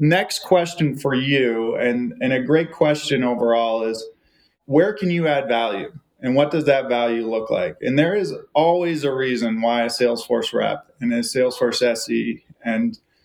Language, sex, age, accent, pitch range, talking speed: English, male, 20-39, American, 130-160 Hz, 170 wpm